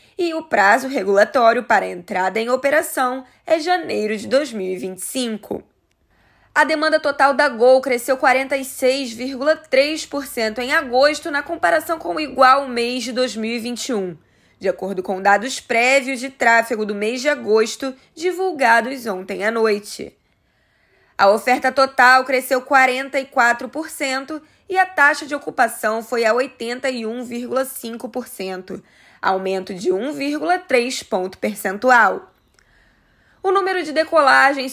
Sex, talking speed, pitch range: female, 115 wpm, 220-280 Hz